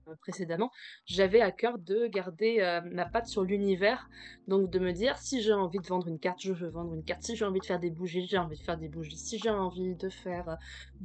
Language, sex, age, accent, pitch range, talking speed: French, female, 20-39, French, 175-220 Hz, 250 wpm